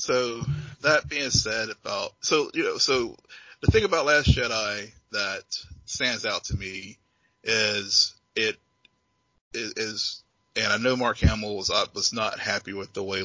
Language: English